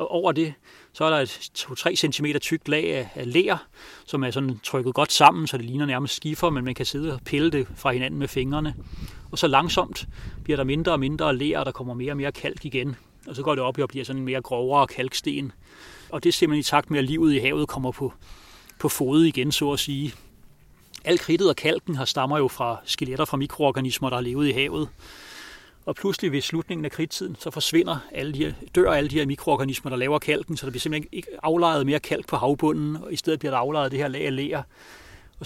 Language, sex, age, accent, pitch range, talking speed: English, male, 30-49, Danish, 130-155 Hz, 230 wpm